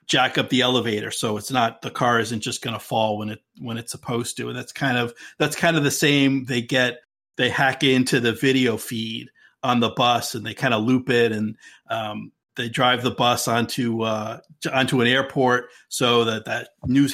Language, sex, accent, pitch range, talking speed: English, male, American, 115-135 Hz, 215 wpm